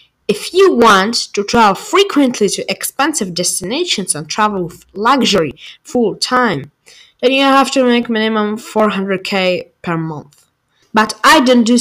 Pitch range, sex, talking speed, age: 185-240 Hz, female, 140 wpm, 20-39